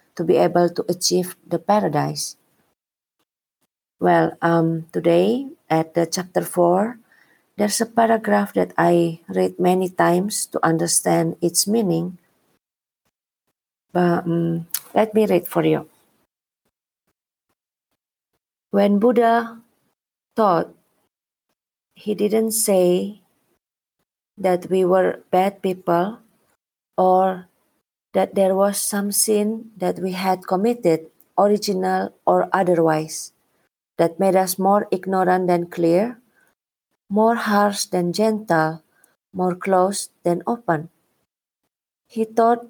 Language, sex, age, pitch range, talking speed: English, female, 40-59, 175-210 Hz, 105 wpm